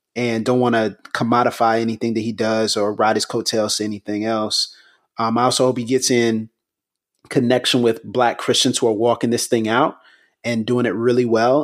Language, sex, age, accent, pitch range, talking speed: English, male, 30-49, American, 115-130 Hz, 195 wpm